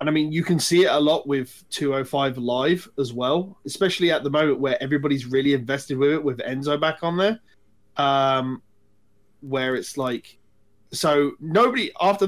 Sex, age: male, 20-39